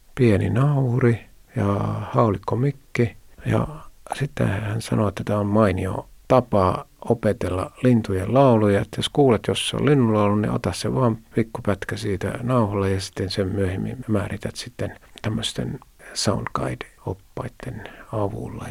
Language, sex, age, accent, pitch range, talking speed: Finnish, male, 50-69, native, 100-115 Hz, 130 wpm